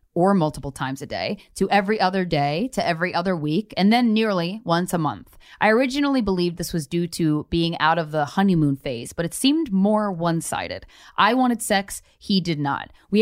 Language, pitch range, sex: English, 160-205 Hz, female